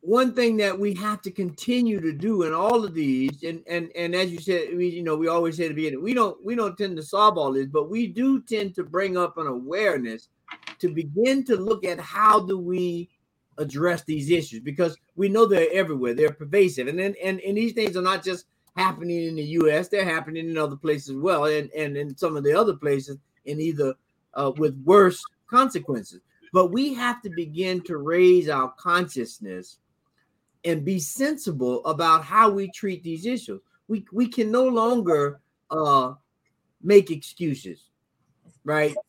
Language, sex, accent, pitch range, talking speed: English, male, American, 155-215 Hz, 190 wpm